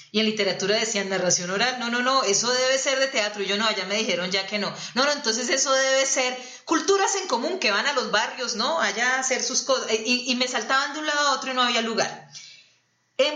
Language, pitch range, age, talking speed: Spanish, 200-245 Hz, 30-49, 255 wpm